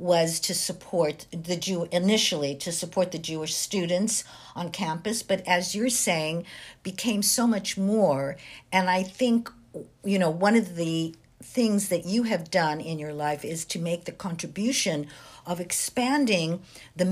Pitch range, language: 150-185 Hz, English